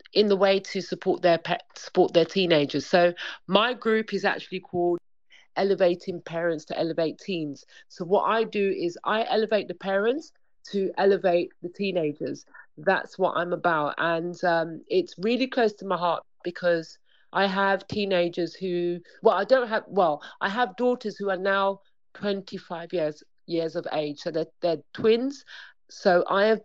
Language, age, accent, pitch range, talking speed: English, 40-59, British, 175-200 Hz, 165 wpm